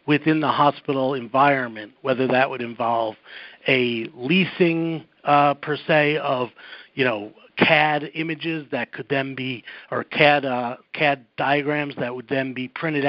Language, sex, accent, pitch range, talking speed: English, male, American, 135-160 Hz, 145 wpm